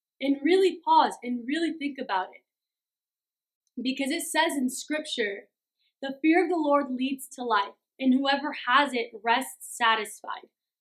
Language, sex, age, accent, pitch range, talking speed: English, female, 20-39, American, 245-330 Hz, 150 wpm